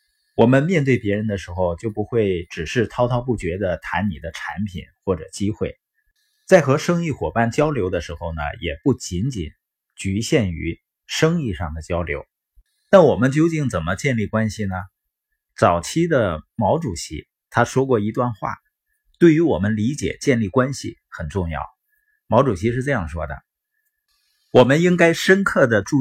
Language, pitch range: Chinese, 95-160 Hz